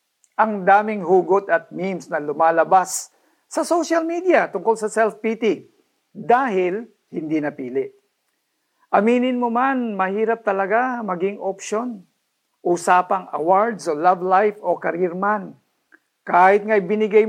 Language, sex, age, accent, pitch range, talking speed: Filipino, male, 50-69, native, 170-225 Hz, 120 wpm